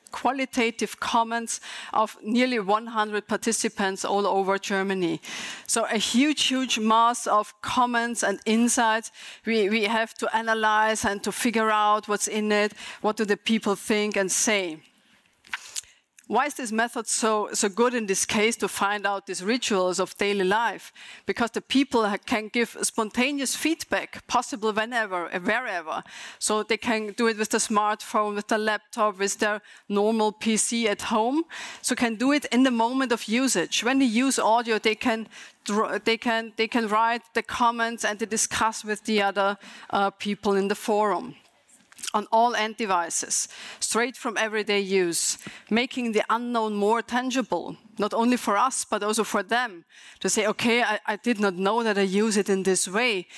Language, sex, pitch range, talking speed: English, female, 205-235 Hz, 170 wpm